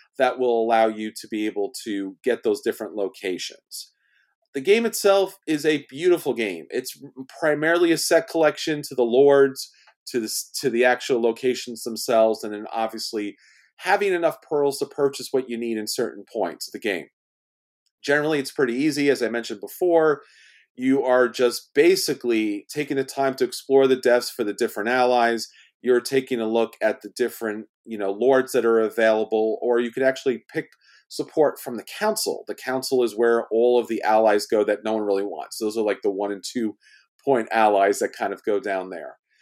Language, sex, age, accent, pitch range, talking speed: English, male, 40-59, American, 115-160 Hz, 190 wpm